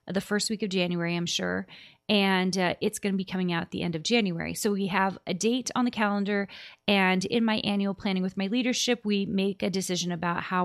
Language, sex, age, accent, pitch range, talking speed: English, female, 30-49, American, 185-230 Hz, 235 wpm